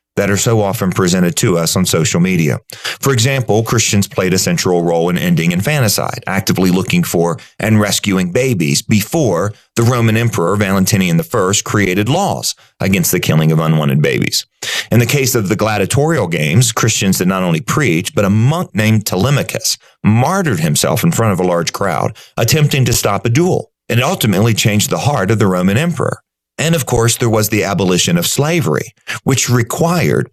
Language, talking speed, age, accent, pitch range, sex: English, 180 wpm, 40-59, American, 100-140 Hz, male